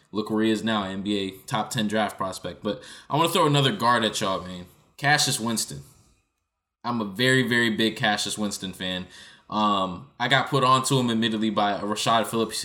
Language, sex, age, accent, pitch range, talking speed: English, male, 20-39, American, 105-125 Hz, 190 wpm